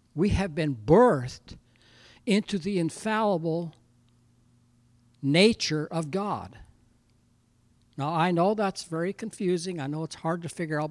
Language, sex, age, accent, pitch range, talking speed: English, male, 60-79, American, 120-195 Hz, 125 wpm